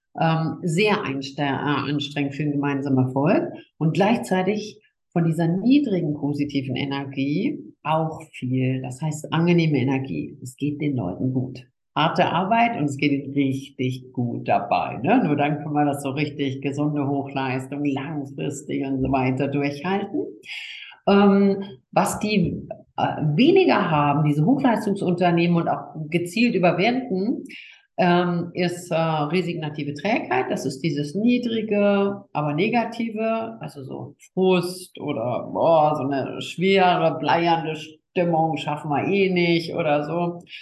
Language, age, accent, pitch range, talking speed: German, 50-69, German, 145-190 Hz, 130 wpm